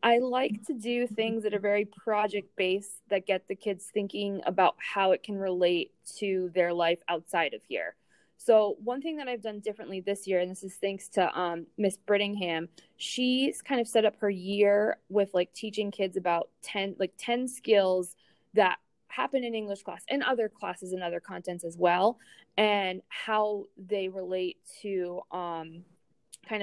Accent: American